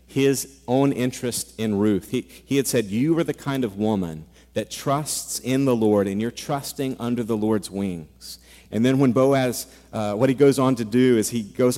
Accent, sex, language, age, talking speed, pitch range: American, male, English, 40-59, 210 wpm, 105-130 Hz